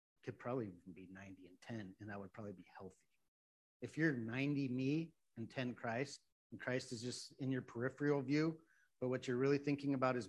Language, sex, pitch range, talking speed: English, male, 120-160 Hz, 200 wpm